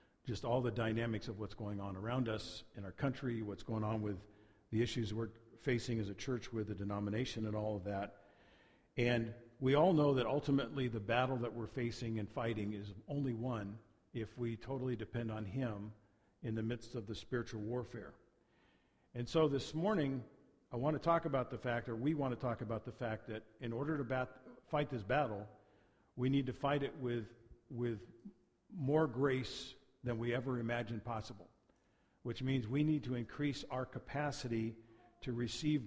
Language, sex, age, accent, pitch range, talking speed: English, male, 50-69, American, 115-135 Hz, 185 wpm